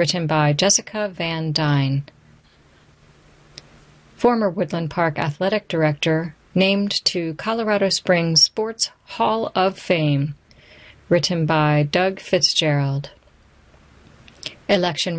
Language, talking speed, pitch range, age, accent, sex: English, 90 wpm, 150-190 Hz, 40-59, American, female